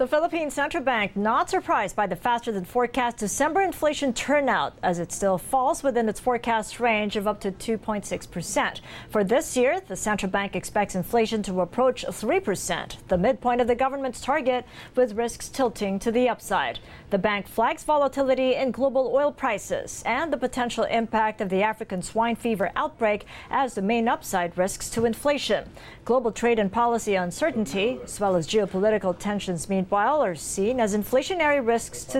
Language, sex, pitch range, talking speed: English, female, 195-255 Hz, 170 wpm